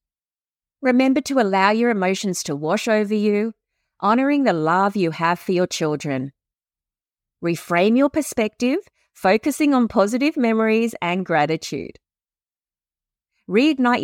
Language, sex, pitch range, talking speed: English, female, 155-225 Hz, 115 wpm